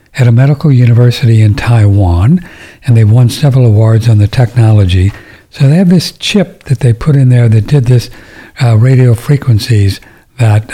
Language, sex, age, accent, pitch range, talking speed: English, male, 60-79, American, 110-135 Hz, 175 wpm